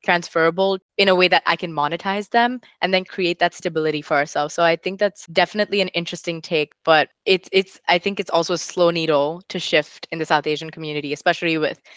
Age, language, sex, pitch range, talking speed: 20-39, English, female, 155-185 Hz, 215 wpm